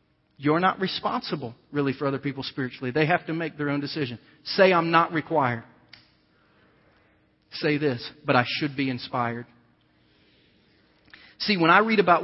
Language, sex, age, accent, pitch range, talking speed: English, male, 40-59, American, 135-170 Hz, 150 wpm